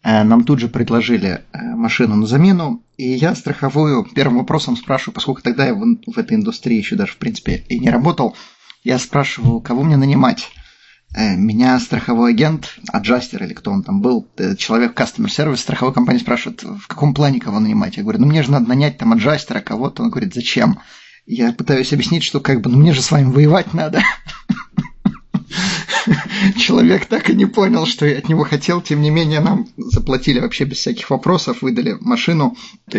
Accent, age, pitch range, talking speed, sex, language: native, 30-49, 130-200 Hz, 180 wpm, male, Russian